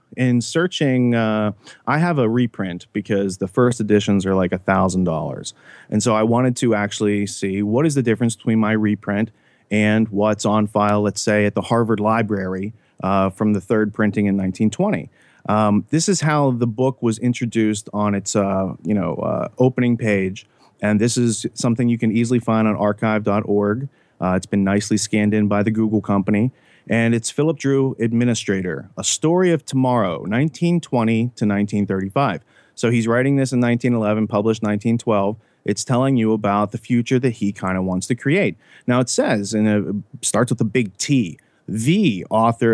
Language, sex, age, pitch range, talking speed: English, male, 30-49, 105-125 Hz, 175 wpm